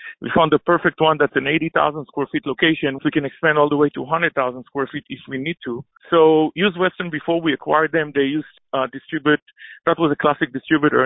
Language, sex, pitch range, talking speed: English, male, 145-170 Hz, 230 wpm